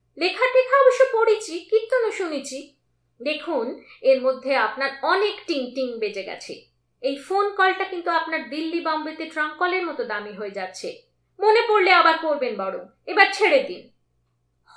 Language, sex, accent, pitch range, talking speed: Bengali, female, native, 265-410 Hz, 80 wpm